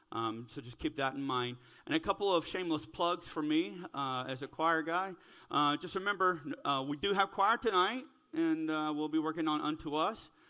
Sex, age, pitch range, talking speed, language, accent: male, 40-59, 125-160 Hz, 210 wpm, English, American